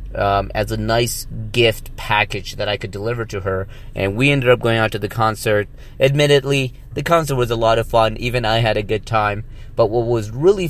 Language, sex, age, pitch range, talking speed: English, male, 30-49, 110-130 Hz, 220 wpm